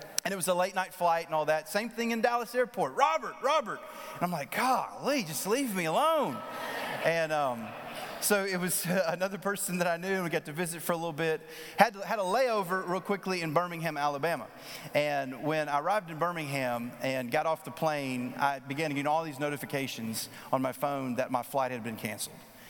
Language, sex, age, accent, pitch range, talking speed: English, male, 30-49, American, 140-195 Hz, 215 wpm